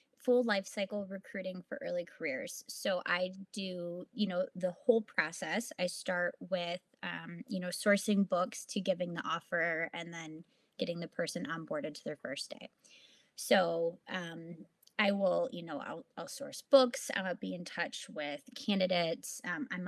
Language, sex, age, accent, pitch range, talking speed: English, female, 20-39, American, 175-230 Hz, 165 wpm